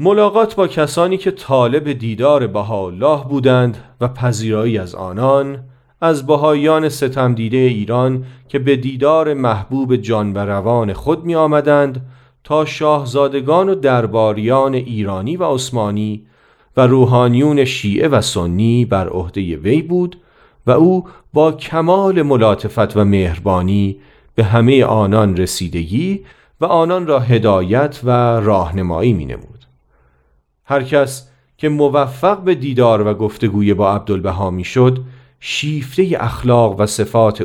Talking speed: 120 wpm